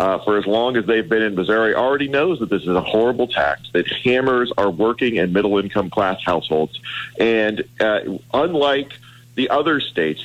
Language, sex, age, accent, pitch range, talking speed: English, male, 40-59, American, 105-125 Hz, 180 wpm